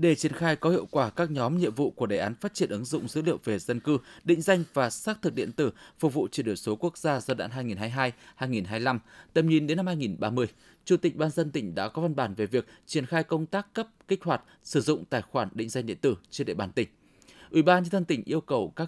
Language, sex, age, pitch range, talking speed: Vietnamese, male, 20-39, 125-170 Hz, 260 wpm